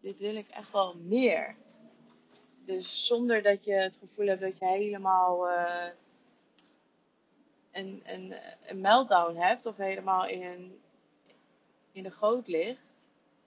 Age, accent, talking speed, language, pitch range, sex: 20-39, Dutch, 130 wpm, Dutch, 175-225 Hz, female